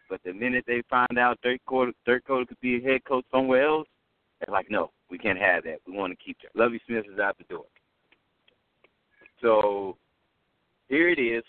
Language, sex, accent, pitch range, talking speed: English, male, American, 115-135 Hz, 205 wpm